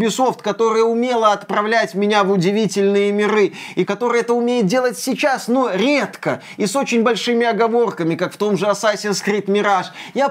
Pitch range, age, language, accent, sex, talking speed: 180-225 Hz, 20-39, Russian, native, male, 170 wpm